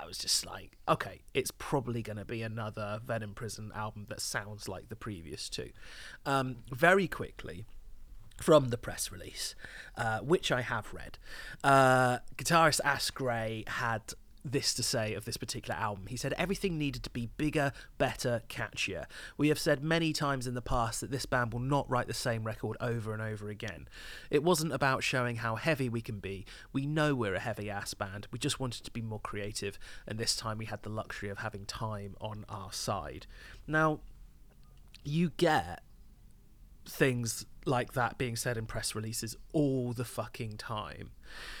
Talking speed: 180 wpm